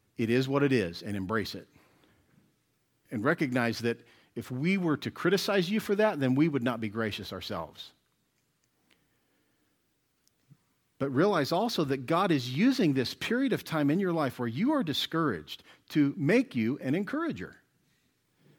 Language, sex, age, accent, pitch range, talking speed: English, male, 50-69, American, 105-150 Hz, 160 wpm